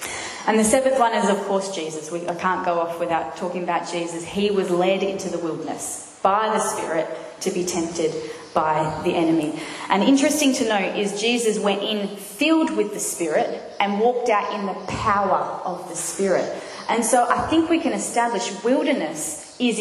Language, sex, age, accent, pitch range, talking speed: English, female, 20-39, Australian, 185-240 Hz, 185 wpm